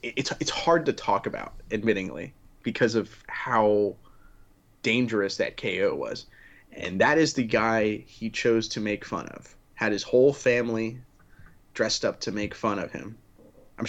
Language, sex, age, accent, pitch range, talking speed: English, male, 20-39, American, 105-135 Hz, 160 wpm